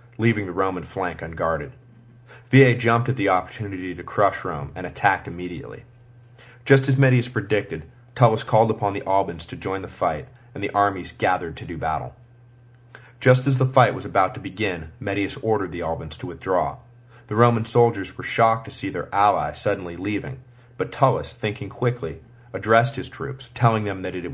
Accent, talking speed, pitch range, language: American, 180 wpm, 100-125 Hz, English